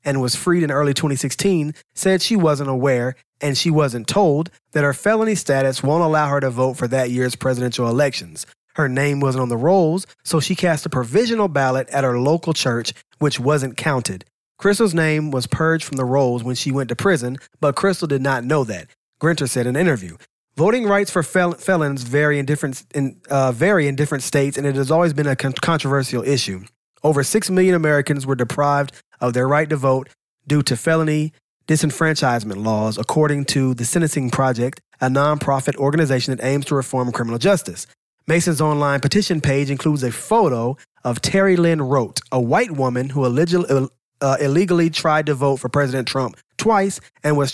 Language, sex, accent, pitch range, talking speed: English, male, American, 130-160 Hz, 190 wpm